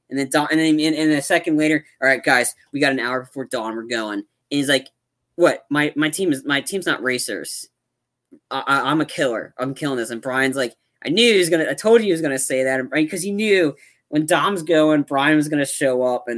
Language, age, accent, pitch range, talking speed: English, 20-39, American, 130-155 Hz, 255 wpm